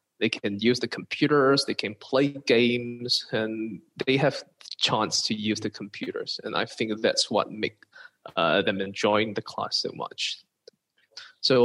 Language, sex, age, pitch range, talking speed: English, male, 20-39, 115-140 Hz, 160 wpm